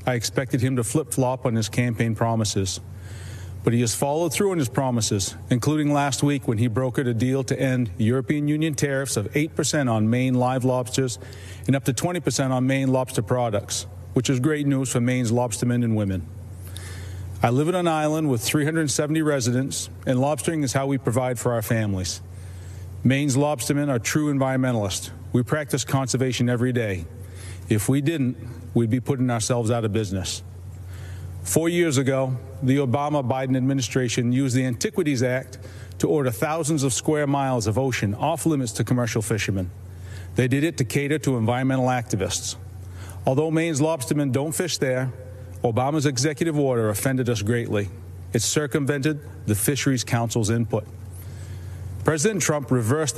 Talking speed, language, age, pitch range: 160 wpm, English, 40-59, 105-140 Hz